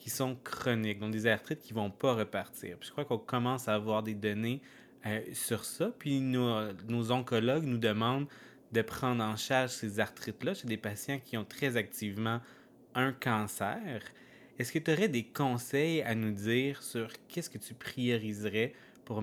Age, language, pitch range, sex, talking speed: 20-39, English, 110-130 Hz, male, 185 wpm